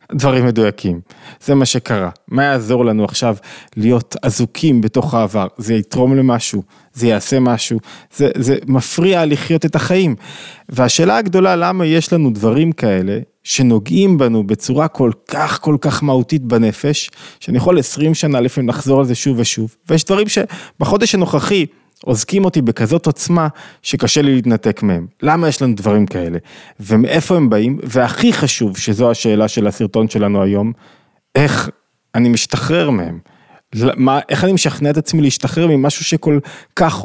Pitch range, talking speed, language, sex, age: 115-150 Hz, 150 wpm, Hebrew, male, 20-39